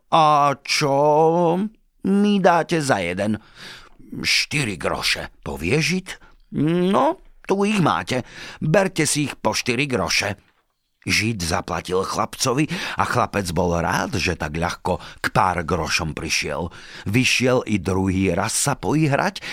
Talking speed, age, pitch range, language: 125 wpm, 50-69, 95-160 Hz, Slovak